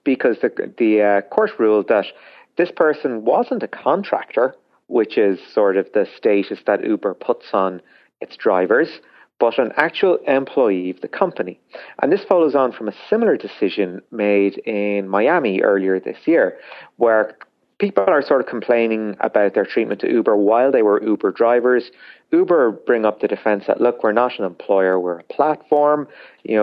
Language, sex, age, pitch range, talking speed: English, male, 40-59, 95-115 Hz, 170 wpm